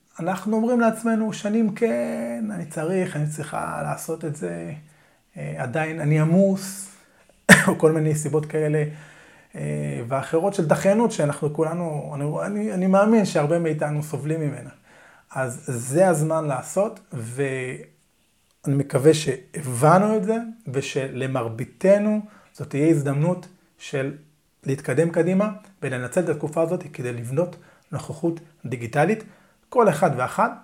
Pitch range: 140-180 Hz